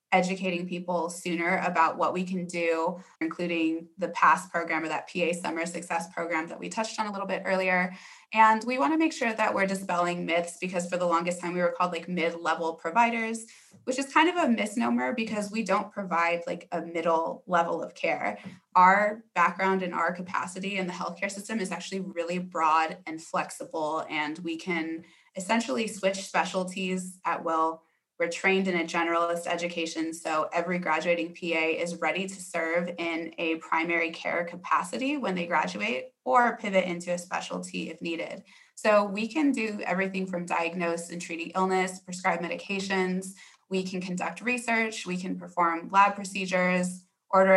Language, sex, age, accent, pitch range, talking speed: English, female, 20-39, American, 170-195 Hz, 175 wpm